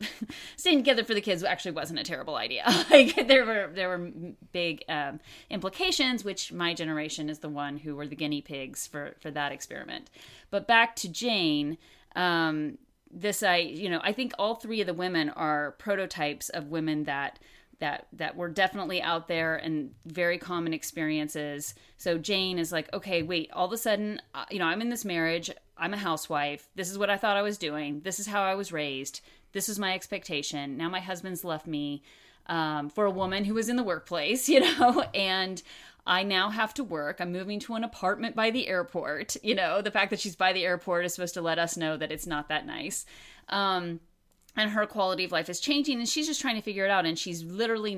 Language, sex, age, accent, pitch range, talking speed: English, female, 30-49, American, 160-205 Hz, 215 wpm